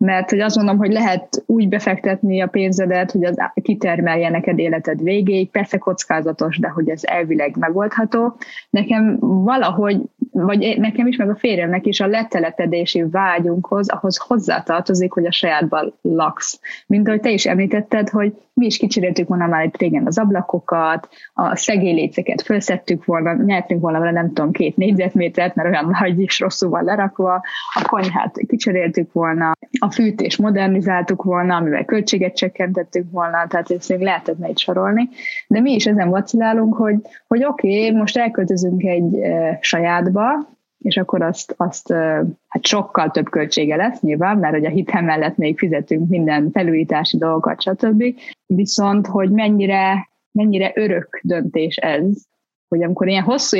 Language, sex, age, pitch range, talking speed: Hungarian, female, 20-39, 175-215 Hz, 150 wpm